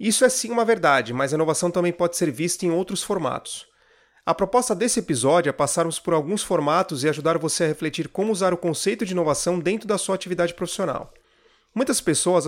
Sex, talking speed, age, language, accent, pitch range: male, 200 wpm, 30-49, Portuguese, Brazilian, 165-215 Hz